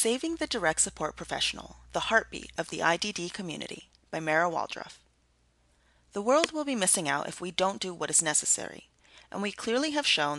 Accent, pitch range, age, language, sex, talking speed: American, 150-205 Hz, 30-49, English, female, 185 wpm